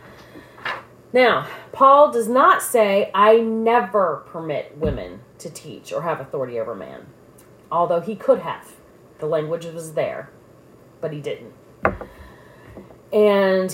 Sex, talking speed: female, 125 wpm